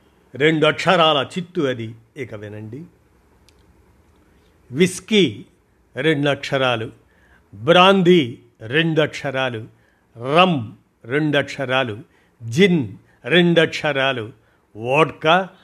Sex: male